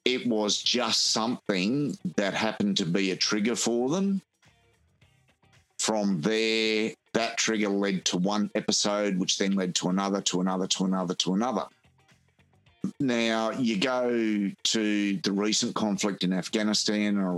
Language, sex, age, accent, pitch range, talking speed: English, male, 50-69, Australian, 95-110 Hz, 140 wpm